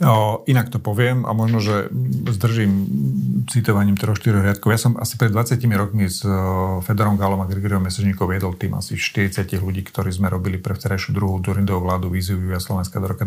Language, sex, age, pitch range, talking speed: Slovak, male, 40-59, 100-115 Hz, 175 wpm